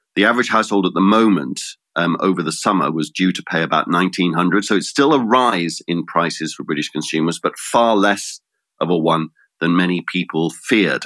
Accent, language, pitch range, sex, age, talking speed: British, English, 85-105 Hz, male, 50-69, 195 wpm